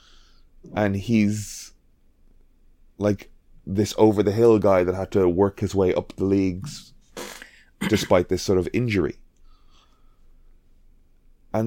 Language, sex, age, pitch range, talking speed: English, male, 20-39, 90-120 Hz, 110 wpm